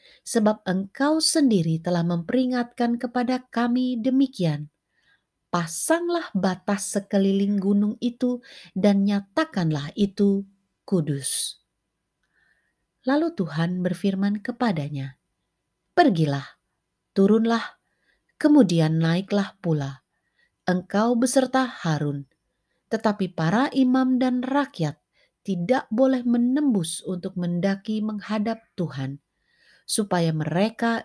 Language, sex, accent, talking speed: Indonesian, female, native, 85 wpm